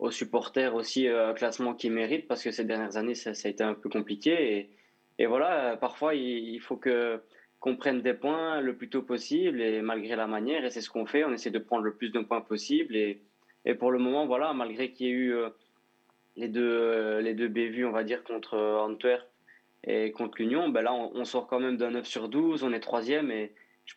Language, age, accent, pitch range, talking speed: English, 20-39, French, 110-125 Hz, 245 wpm